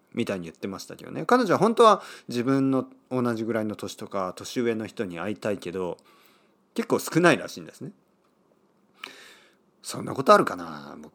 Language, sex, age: Japanese, male, 40-59